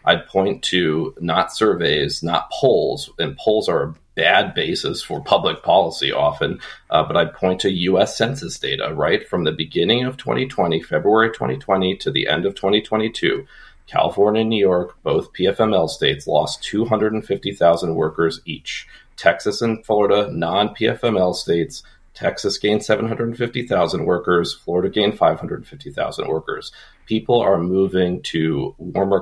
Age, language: 40-59, English